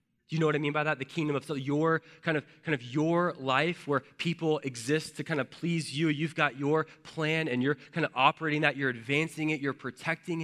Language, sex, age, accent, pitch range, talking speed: English, male, 20-39, American, 125-155 Hz, 230 wpm